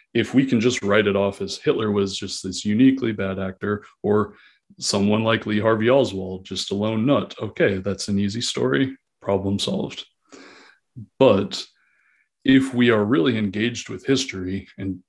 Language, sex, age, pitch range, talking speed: English, male, 30-49, 95-115 Hz, 165 wpm